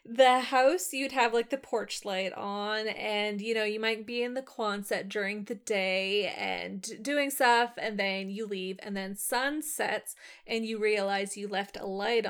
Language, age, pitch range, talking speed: English, 20-39, 210-270 Hz, 190 wpm